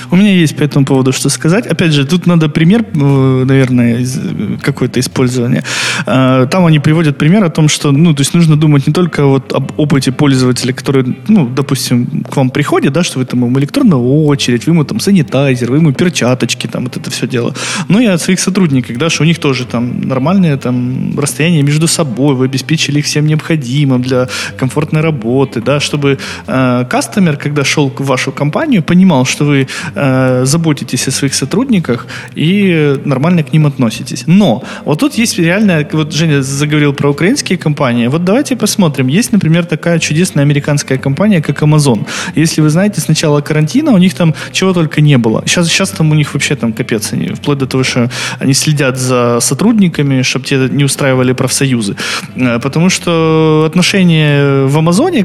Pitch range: 130-165 Hz